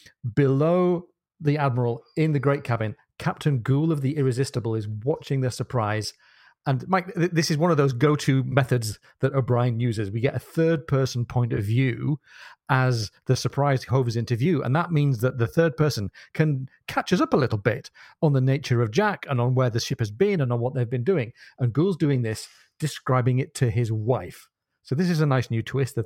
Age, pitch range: 40-59, 120-150 Hz